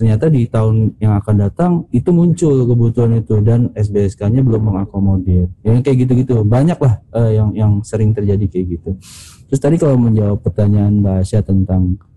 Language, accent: Indonesian, native